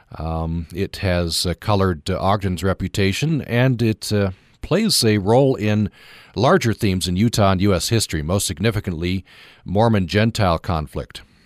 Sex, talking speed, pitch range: male, 135 wpm, 90-110 Hz